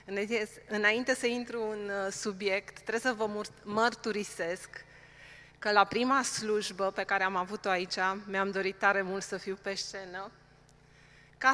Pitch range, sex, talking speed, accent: 190-235 Hz, female, 140 wpm, native